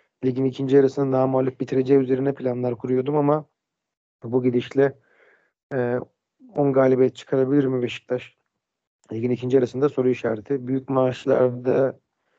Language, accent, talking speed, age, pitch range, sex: Turkish, native, 120 wpm, 40-59, 125-140 Hz, male